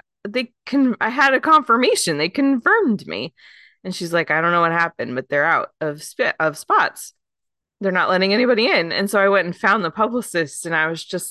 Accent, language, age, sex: American, English, 20-39, female